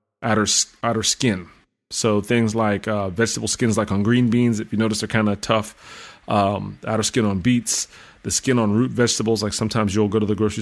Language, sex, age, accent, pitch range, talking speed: English, male, 30-49, American, 105-125 Hz, 210 wpm